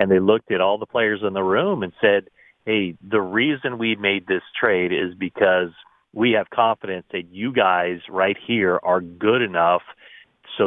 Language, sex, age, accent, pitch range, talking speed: English, male, 40-59, American, 95-115 Hz, 185 wpm